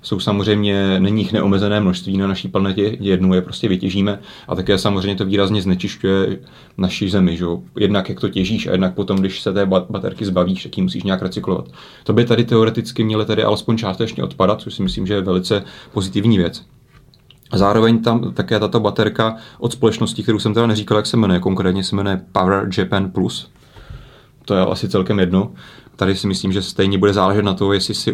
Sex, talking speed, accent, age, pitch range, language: male, 200 wpm, native, 30-49, 95-110 Hz, Czech